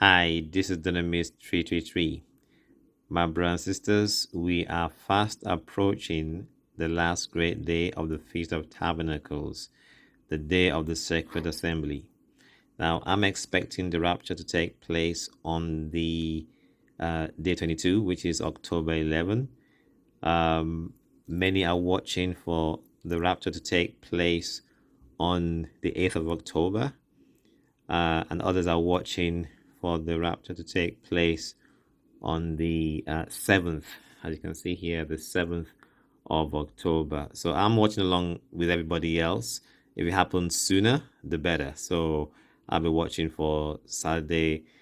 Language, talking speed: English, 135 wpm